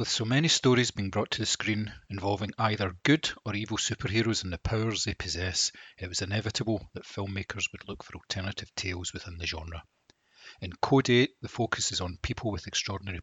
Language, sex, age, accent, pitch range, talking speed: English, male, 40-59, British, 95-115 Hz, 195 wpm